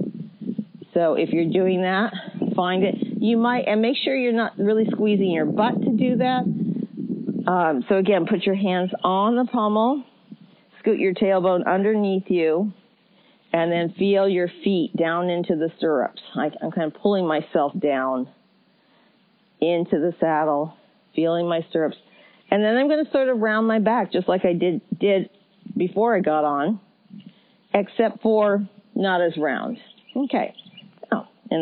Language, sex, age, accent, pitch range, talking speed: English, female, 40-59, American, 180-225 Hz, 160 wpm